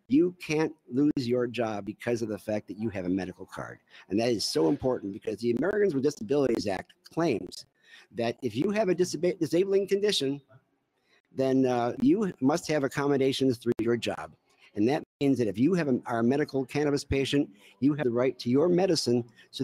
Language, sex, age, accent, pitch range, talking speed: English, male, 50-69, American, 120-150 Hz, 200 wpm